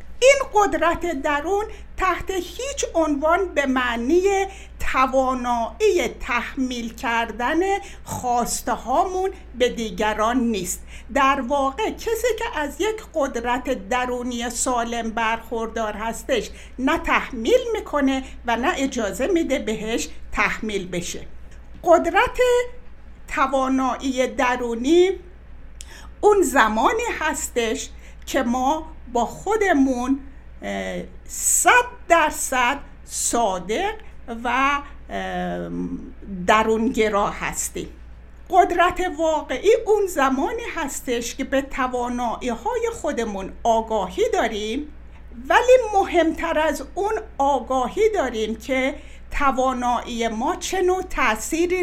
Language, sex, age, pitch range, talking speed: Persian, female, 60-79, 235-360 Hz, 85 wpm